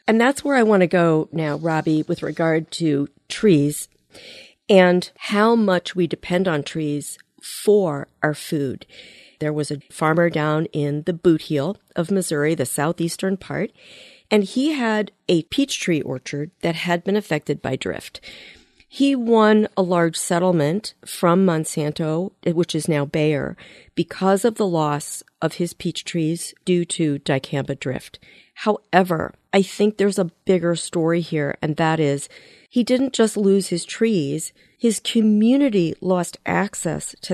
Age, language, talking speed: 50-69, English, 155 wpm